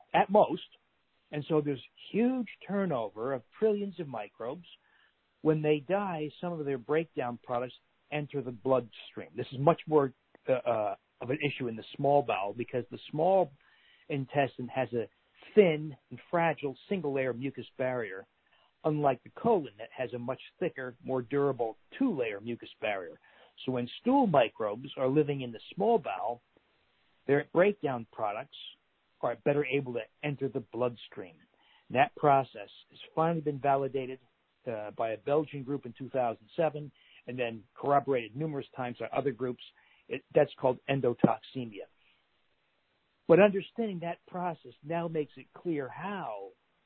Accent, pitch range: American, 125-155 Hz